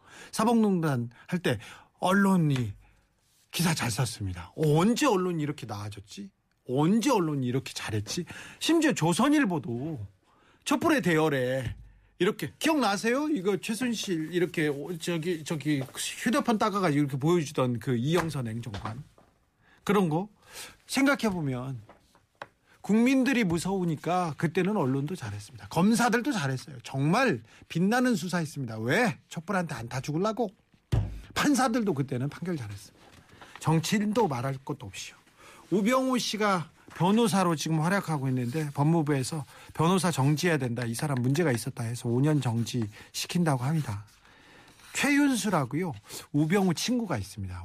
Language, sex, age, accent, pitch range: Korean, male, 40-59, native, 125-195 Hz